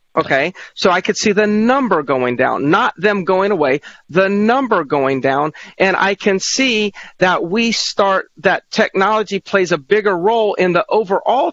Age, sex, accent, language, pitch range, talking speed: 40-59, male, American, English, 160-210 Hz, 170 wpm